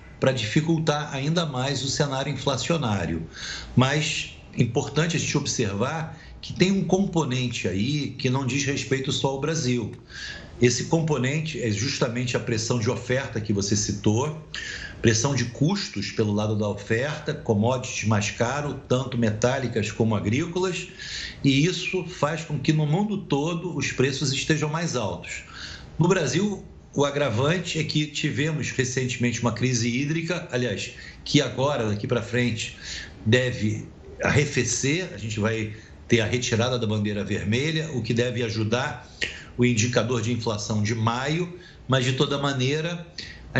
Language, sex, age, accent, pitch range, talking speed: Portuguese, male, 50-69, Brazilian, 115-150 Hz, 145 wpm